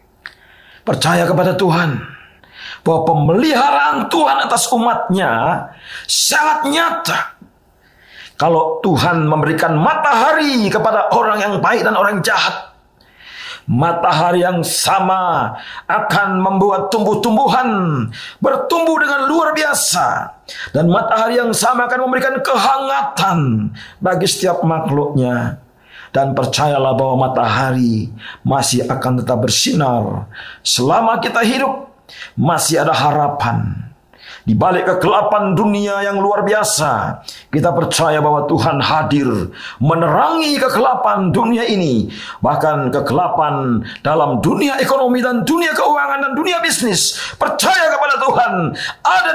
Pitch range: 145-235 Hz